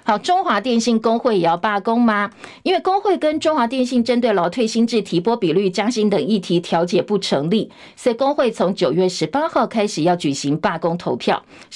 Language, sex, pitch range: Chinese, female, 180-245 Hz